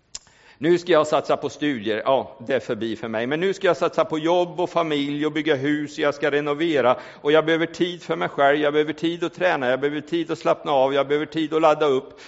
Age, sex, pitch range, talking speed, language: 50-69, male, 130-165 Hz, 255 wpm, Swedish